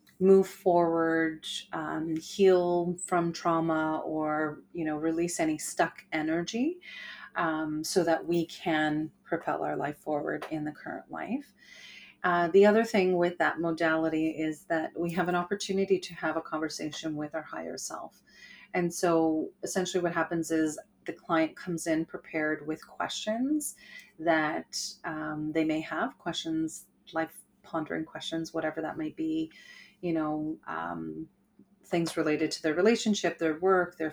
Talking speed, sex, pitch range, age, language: 145 wpm, female, 155-185 Hz, 30-49, English